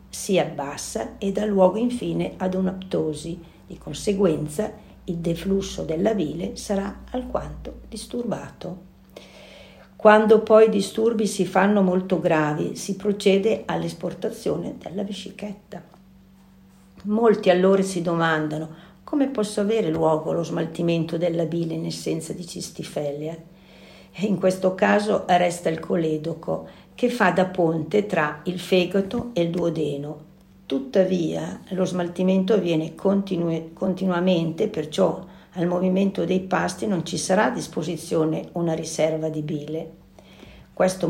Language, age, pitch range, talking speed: Italian, 50-69, 165-195 Hz, 120 wpm